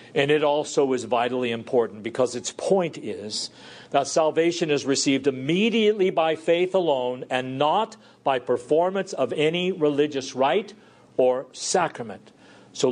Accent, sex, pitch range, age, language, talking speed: American, male, 125-180 Hz, 50-69, English, 135 wpm